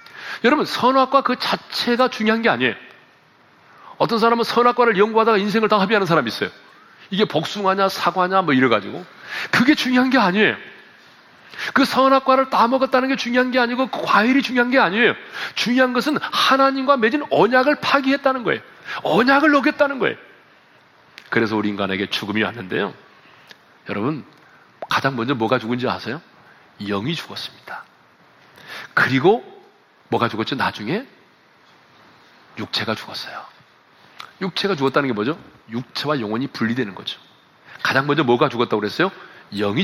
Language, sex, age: Korean, male, 40-59